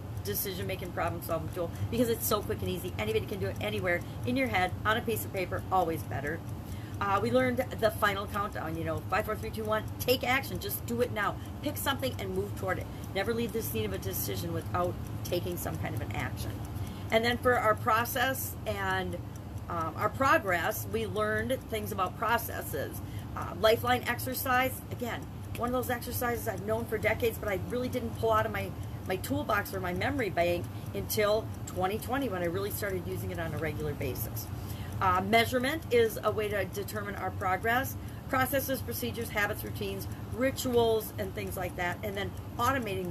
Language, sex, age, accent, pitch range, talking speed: English, female, 40-59, American, 100-130 Hz, 190 wpm